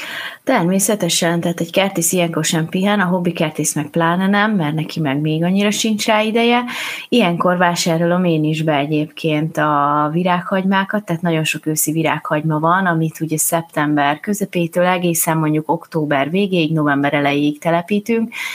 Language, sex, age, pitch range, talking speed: Hungarian, female, 20-39, 155-195 Hz, 150 wpm